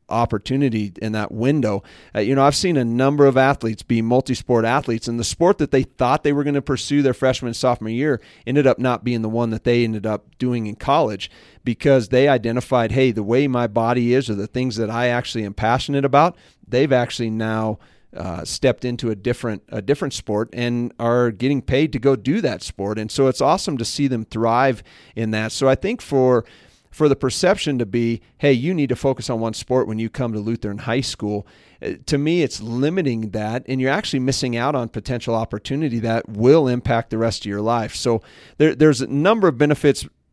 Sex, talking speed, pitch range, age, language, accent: male, 215 wpm, 115-135 Hz, 40-59, English, American